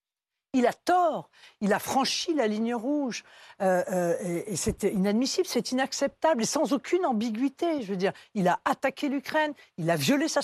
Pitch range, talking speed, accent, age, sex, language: 210-315 Hz, 185 wpm, French, 60-79, female, French